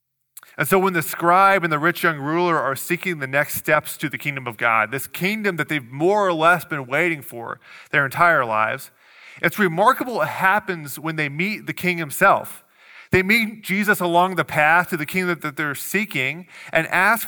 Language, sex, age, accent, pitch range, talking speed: English, male, 30-49, American, 135-175 Hz, 200 wpm